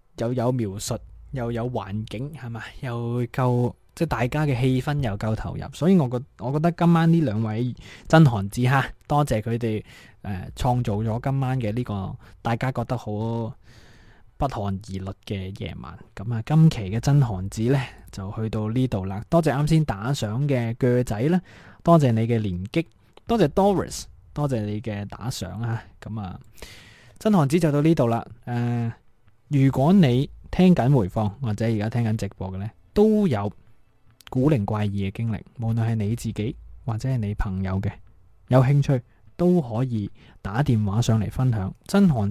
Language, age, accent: Chinese, 20-39, native